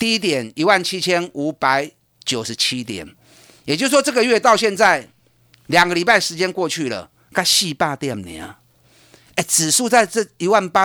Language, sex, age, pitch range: Chinese, male, 50-69, 130-210 Hz